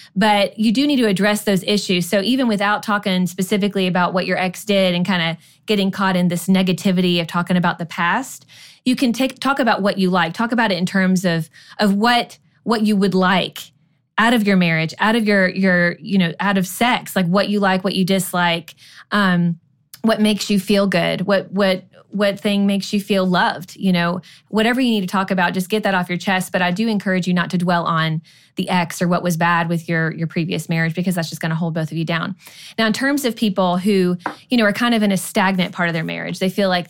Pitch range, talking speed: 170-205 Hz, 240 wpm